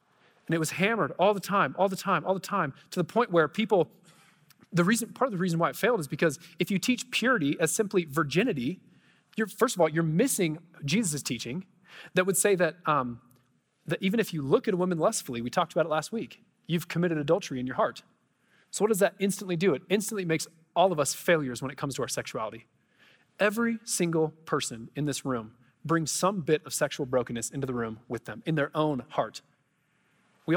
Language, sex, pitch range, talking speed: English, male, 155-200 Hz, 220 wpm